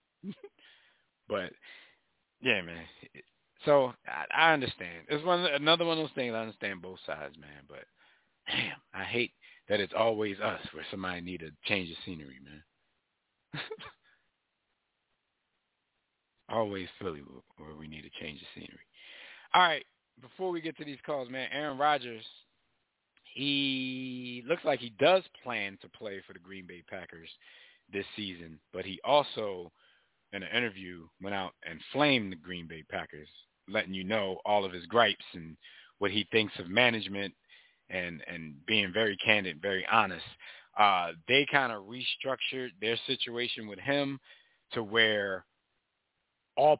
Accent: American